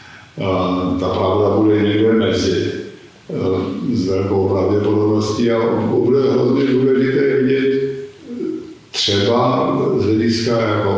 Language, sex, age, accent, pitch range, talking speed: Czech, male, 50-69, native, 105-120 Hz, 85 wpm